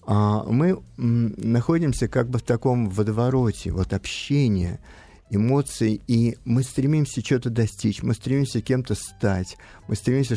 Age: 50-69